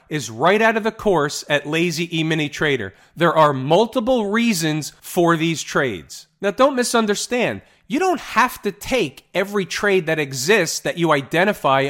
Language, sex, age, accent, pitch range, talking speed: English, male, 40-59, American, 140-205 Hz, 160 wpm